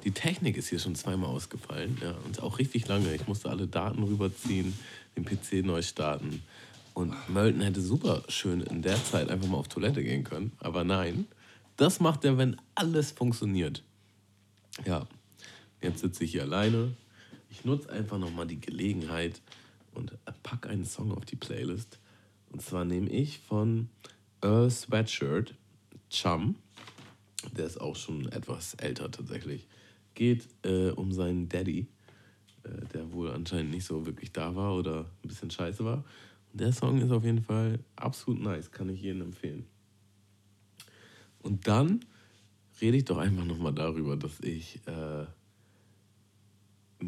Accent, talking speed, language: German, 155 wpm, German